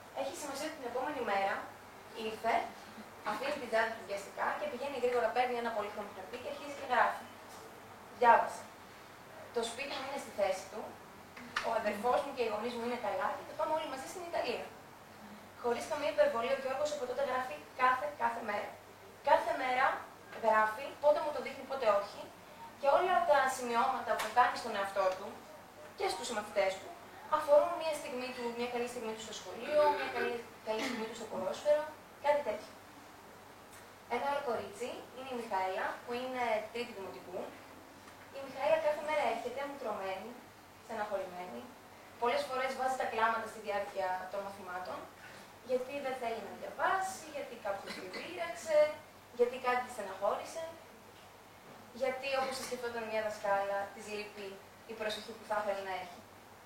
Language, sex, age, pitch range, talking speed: Greek, female, 20-39, 210-280 Hz, 155 wpm